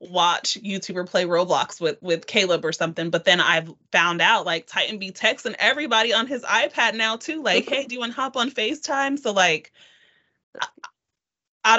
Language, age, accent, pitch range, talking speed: English, 30-49, American, 170-220 Hz, 185 wpm